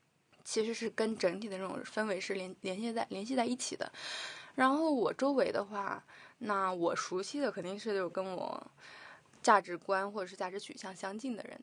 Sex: female